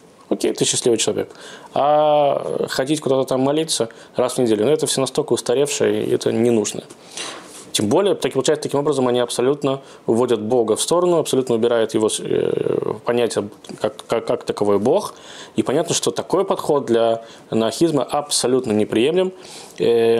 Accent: native